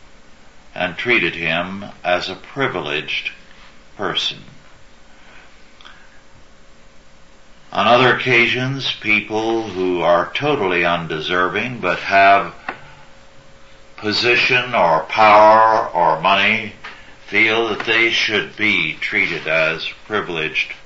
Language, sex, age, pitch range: English, male, 60-79, 75-105 Hz